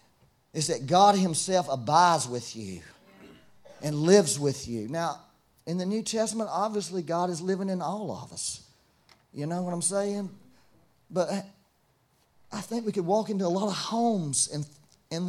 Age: 40-59